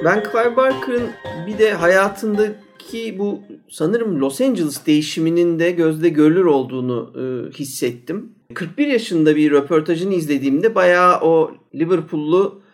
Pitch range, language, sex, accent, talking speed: 135-185 Hz, Turkish, male, native, 120 wpm